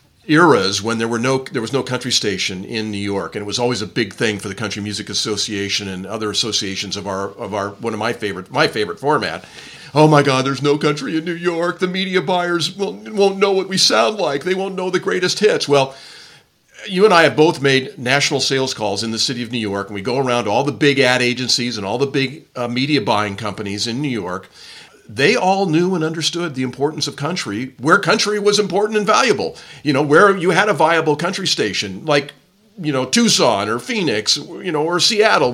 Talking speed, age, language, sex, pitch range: 230 wpm, 50-69, English, male, 115-185 Hz